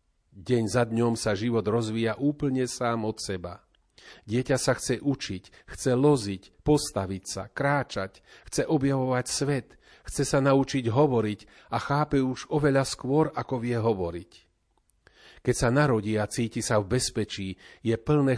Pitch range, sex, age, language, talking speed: 105-130 Hz, male, 40-59, Slovak, 145 wpm